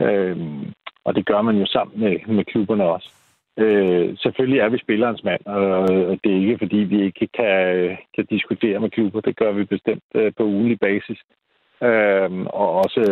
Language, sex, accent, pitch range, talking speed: Danish, male, native, 95-110 Hz, 185 wpm